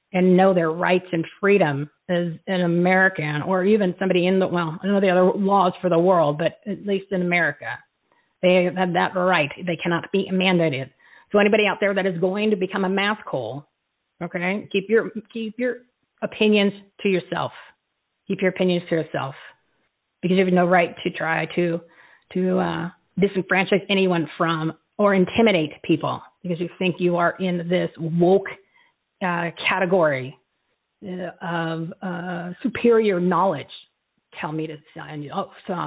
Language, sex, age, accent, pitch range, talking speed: English, female, 40-59, American, 165-195 Hz, 160 wpm